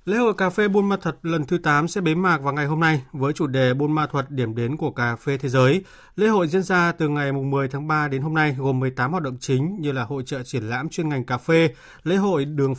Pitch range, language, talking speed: 130-155 Hz, Vietnamese, 280 wpm